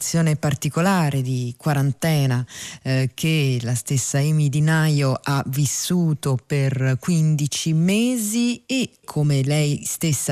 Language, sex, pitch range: Italian, female, 135-175 Hz